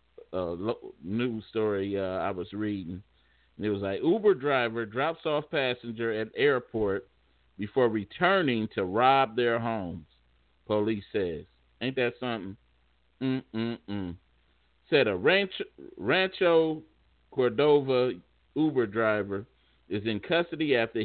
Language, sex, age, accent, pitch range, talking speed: English, male, 50-69, American, 90-135 Hz, 120 wpm